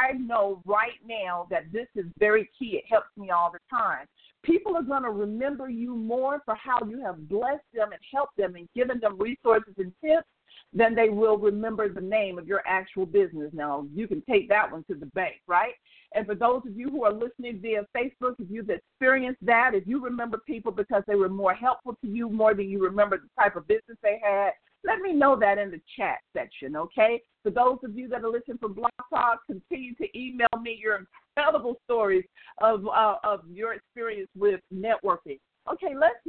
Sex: female